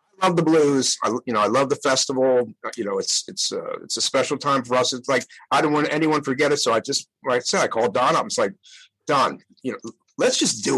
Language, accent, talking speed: English, American, 260 wpm